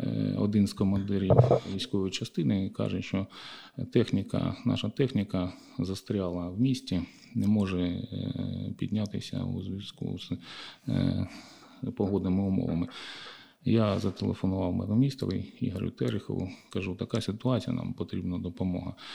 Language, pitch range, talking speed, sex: Ukrainian, 95-120 Hz, 100 wpm, male